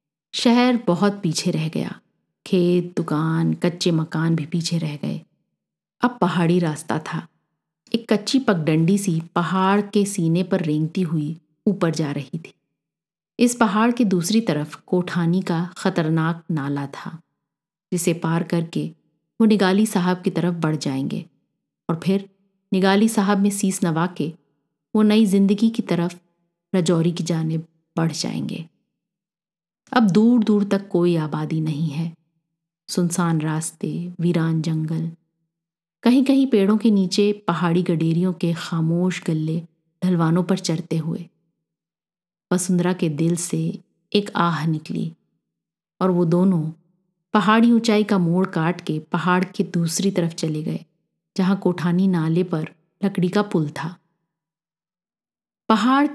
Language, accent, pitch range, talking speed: Hindi, native, 165-195 Hz, 135 wpm